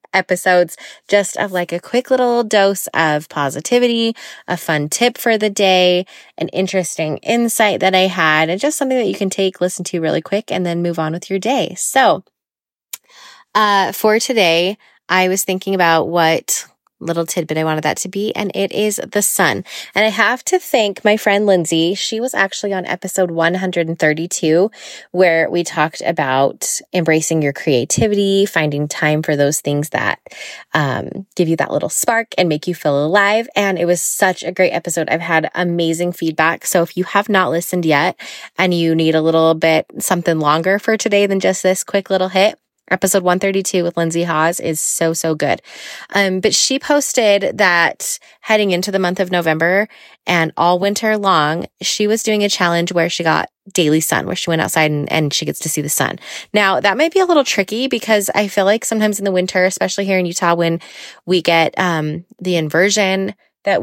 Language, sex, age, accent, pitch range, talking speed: English, female, 20-39, American, 165-205 Hz, 195 wpm